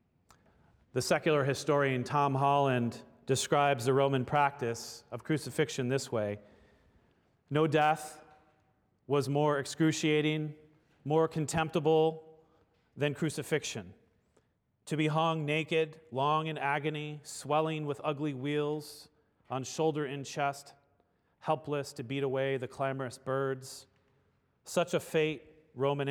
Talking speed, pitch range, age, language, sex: 110 wpm, 130-155 Hz, 40-59, English, male